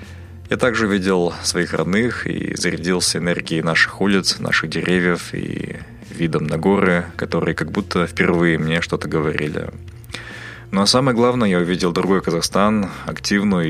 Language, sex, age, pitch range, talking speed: Russian, male, 20-39, 85-100 Hz, 140 wpm